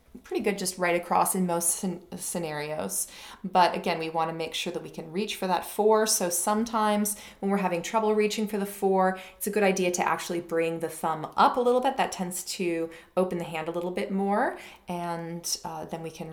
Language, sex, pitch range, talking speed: English, female, 170-205 Hz, 220 wpm